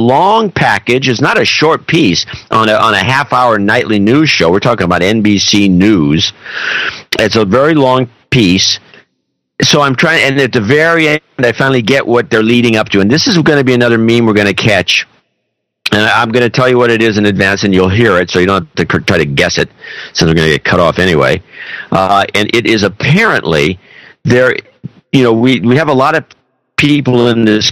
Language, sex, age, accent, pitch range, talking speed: English, male, 50-69, American, 95-125 Hz, 225 wpm